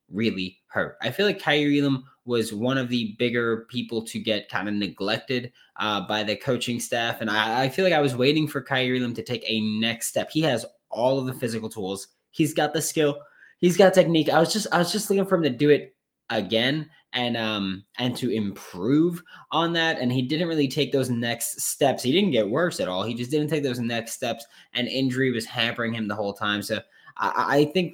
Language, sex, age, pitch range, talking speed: English, male, 20-39, 110-150 Hz, 225 wpm